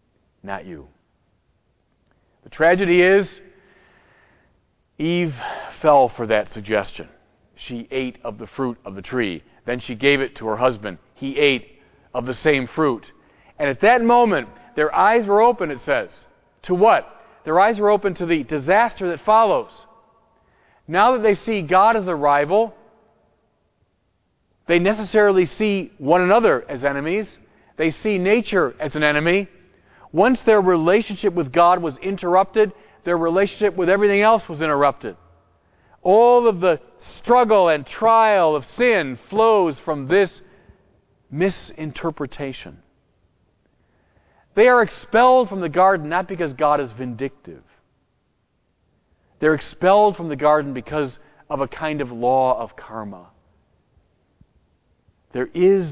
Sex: male